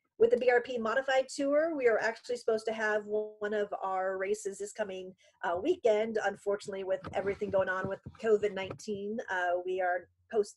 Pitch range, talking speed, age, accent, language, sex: 195-225 Hz, 170 wpm, 40-59, American, English, female